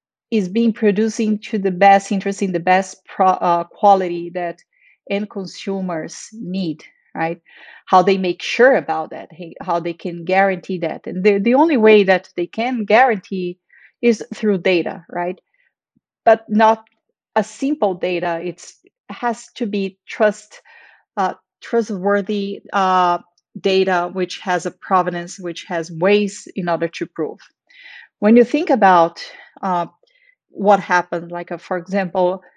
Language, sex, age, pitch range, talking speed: English, female, 30-49, 180-215 Hz, 145 wpm